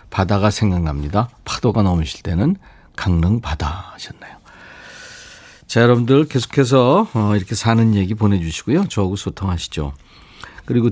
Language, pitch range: Korean, 90-135 Hz